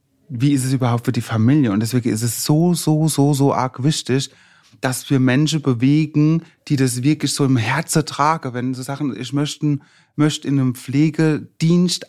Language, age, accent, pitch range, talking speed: German, 30-49, German, 125-150 Hz, 185 wpm